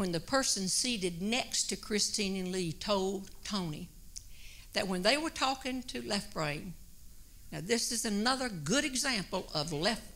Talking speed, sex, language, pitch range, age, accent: 160 wpm, female, English, 205-290 Hz, 60-79, American